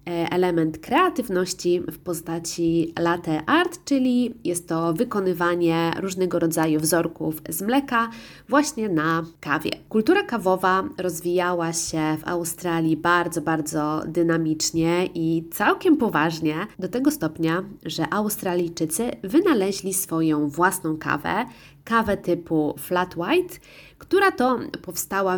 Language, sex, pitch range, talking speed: Polish, female, 165-205 Hz, 110 wpm